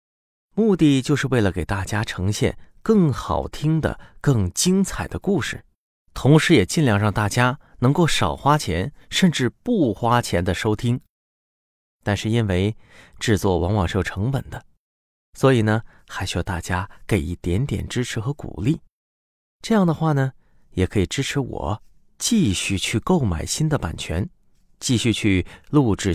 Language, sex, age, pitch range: Chinese, male, 30-49, 95-135 Hz